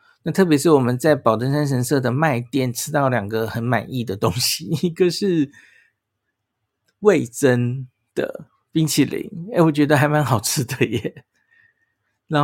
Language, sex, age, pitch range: Chinese, male, 50-69, 115-160 Hz